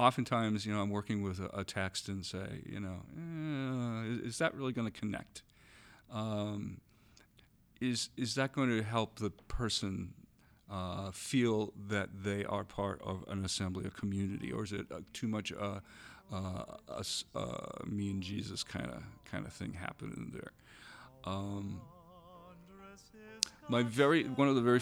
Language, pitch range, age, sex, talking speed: English, 100-130 Hz, 40-59, male, 160 wpm